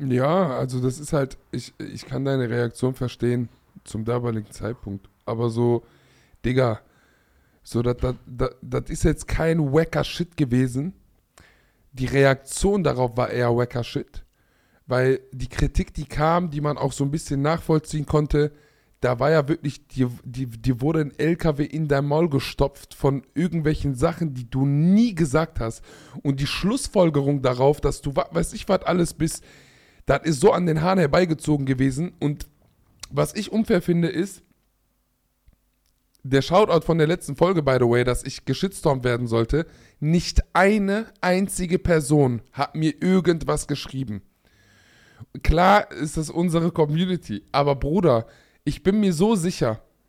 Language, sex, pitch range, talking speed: German, male, 125-170 Hz, 150 wpm